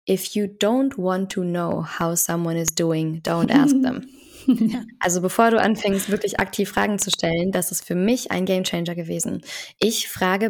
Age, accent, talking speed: 20-39, German, 185 wpm